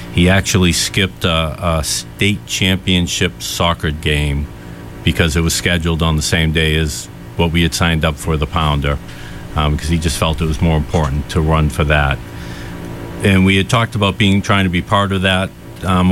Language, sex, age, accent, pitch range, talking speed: English, male, 50-69, American, 80-95 Hz, 195 wpm